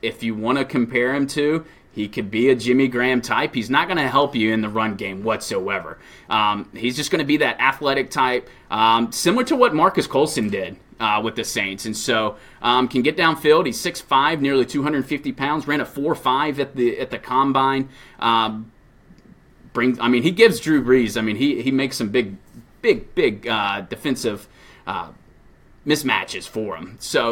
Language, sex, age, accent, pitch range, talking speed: English, male, 30-49, American, 115-140 Hz, 195 wpm